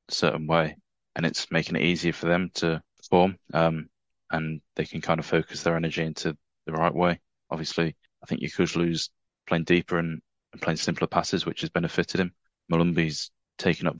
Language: English